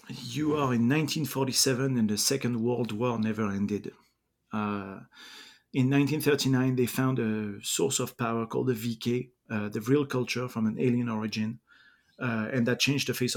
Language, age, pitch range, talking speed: English, 40-59, 110-130 Hz, 165 wpm